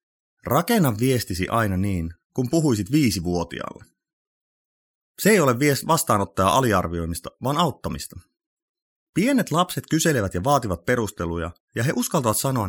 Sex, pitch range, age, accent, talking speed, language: male, 105-170 Hz, 30-49, native, 115 wpm, Finnish